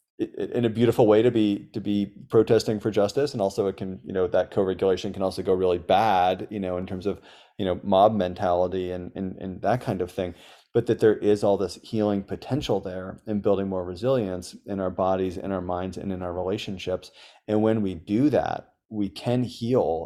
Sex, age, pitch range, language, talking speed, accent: male, 30-49, 95-115 Hz, English, 210 wpm, American